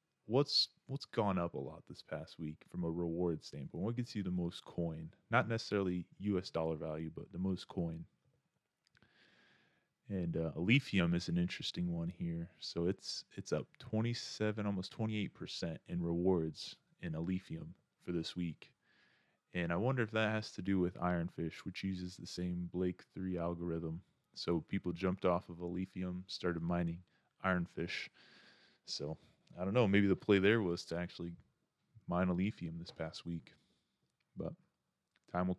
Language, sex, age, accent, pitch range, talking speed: English, male, 20-39, American, 85-95 Hz, 160 wpm